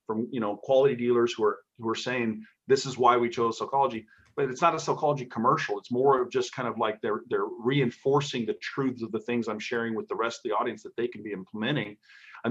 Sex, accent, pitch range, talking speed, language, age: male, American, 115-140 Hz, 245 wpm, English, 40-59